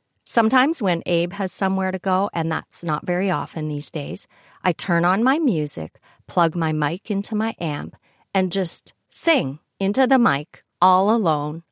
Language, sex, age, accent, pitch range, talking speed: English, female, 40-59, American, 160-205 Hz, 170 wpm